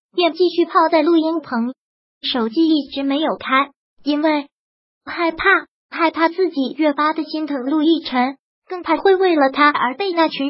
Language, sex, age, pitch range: Chinese, male, 20-39, 270-340 Hz